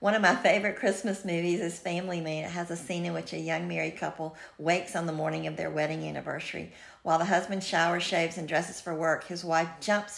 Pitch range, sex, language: 160-190 Hz, female, English